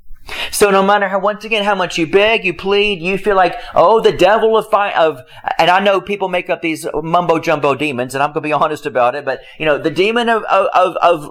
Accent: American